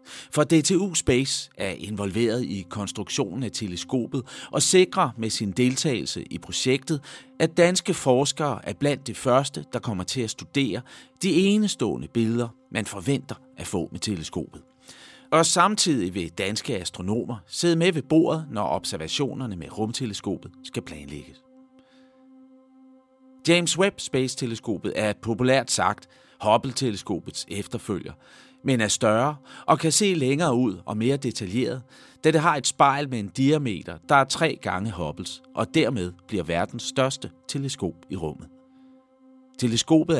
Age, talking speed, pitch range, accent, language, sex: 40-59, 140 wpm, 110-160 Hz, native, Danish, male